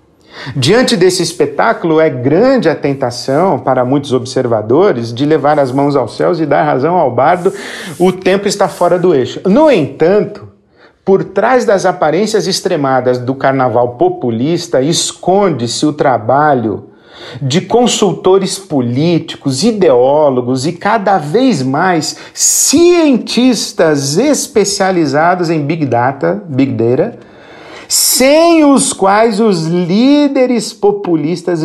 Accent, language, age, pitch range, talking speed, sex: Brazilian, Portuguese, 50-69, 130-190 Hz, 115 wpm, male